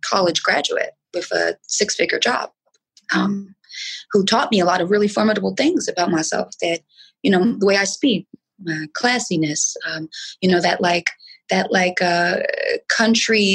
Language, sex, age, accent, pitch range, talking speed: English, female, 20-39, American, 180-230 Hz, 160 wpm